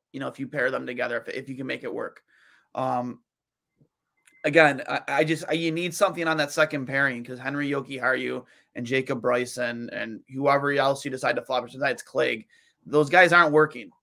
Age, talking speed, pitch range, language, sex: 20-39, 200 wpm, 140-175 Hz, English, male